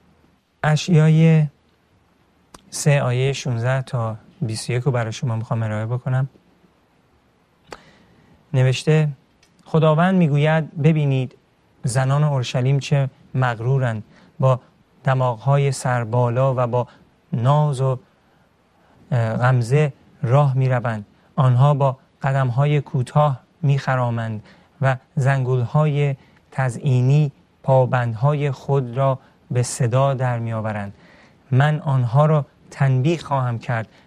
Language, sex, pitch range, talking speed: Persian, male, 125-145 Hz, 95 wpm